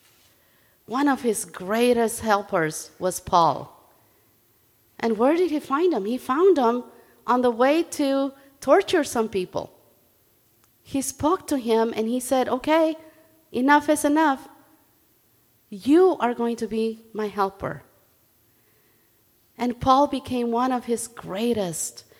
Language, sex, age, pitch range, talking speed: English, female, 40-59, 195-270 Hz, 130 wpm